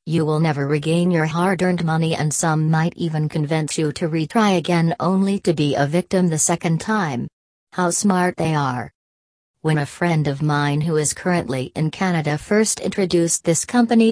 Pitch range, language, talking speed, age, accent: 150-175 Hz, English, 180 wpm, 40-59, American